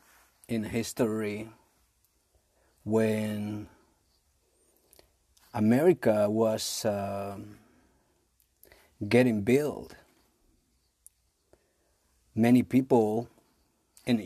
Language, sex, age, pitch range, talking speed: Spanish, male, 40-59, 95-120 Hz, 45 wpm